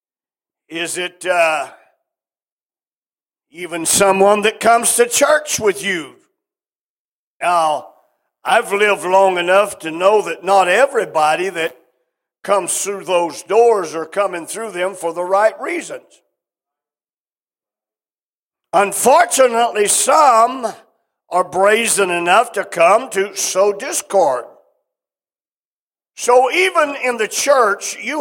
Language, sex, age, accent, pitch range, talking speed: English, male, 50-69, American, 190-270 Hz, 105 wpm